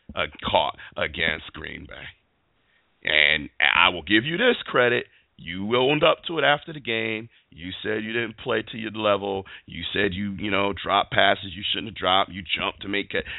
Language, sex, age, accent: English, male, 40-59, American